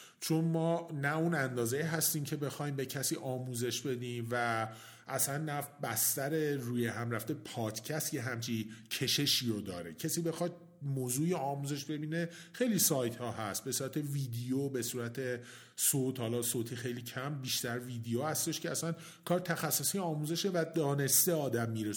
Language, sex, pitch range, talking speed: Persian, male, 125-170 Hz, 155 wpm